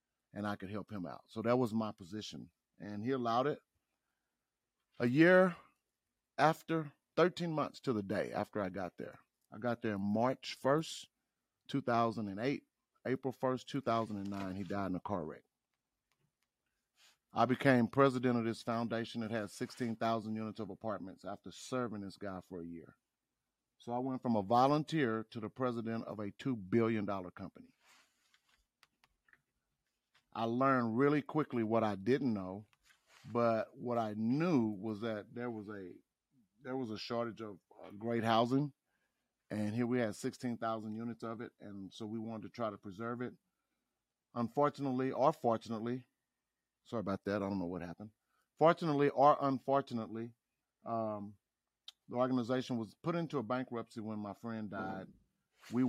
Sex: male